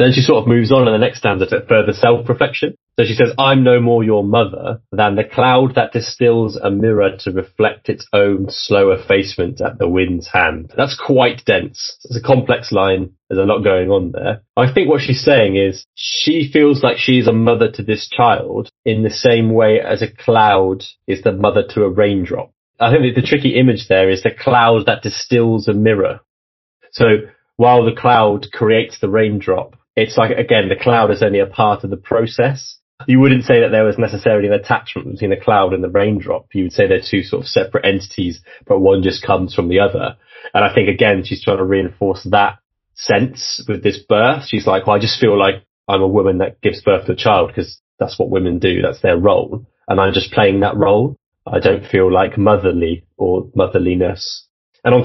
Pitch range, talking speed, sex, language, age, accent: 95-120 Hz, 215 wpm, male, English, 30-49, British